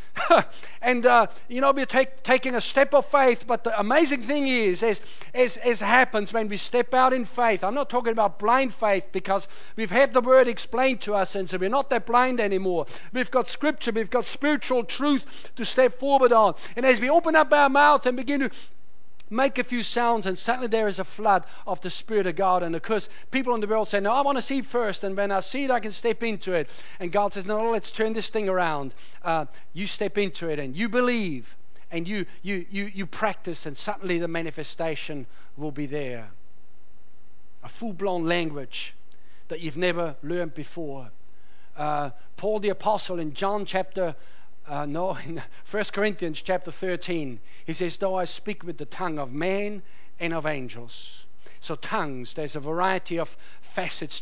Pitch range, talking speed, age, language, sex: 150-230 Hz, 200 wpm, 50-69, English, male